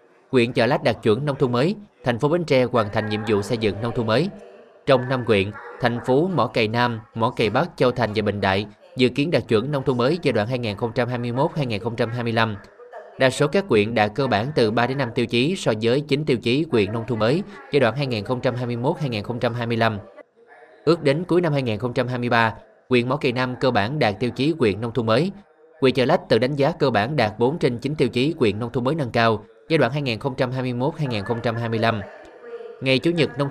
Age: 20-39